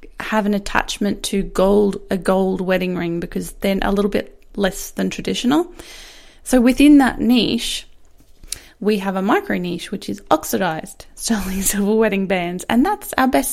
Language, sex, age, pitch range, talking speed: English, female, 20-39, 195-250 Hz, 165 wpm